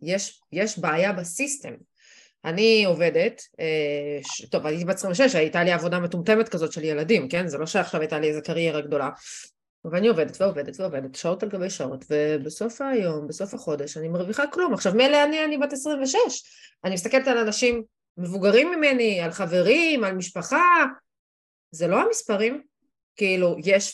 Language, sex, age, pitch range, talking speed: Hebrew, female, 30-49, 170-265 Hz, 155 wpm